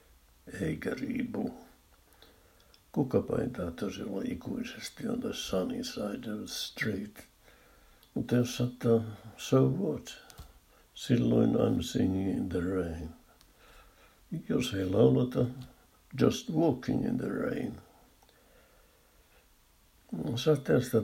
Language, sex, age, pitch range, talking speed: Finnish, male, 60-79, 80-105 Hz, 90 wpm